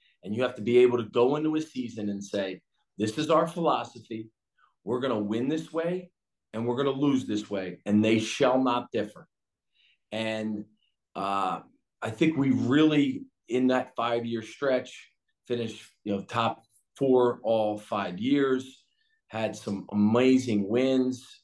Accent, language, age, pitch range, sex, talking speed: American, English, 40-59, 110-135 Hz, male, 160 wpm